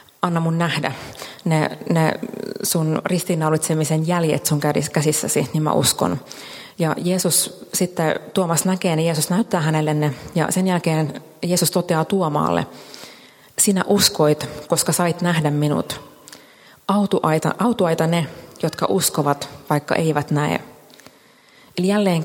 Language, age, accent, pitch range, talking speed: Finnish, 30-49, native, 155-180 Hz, 120 wpm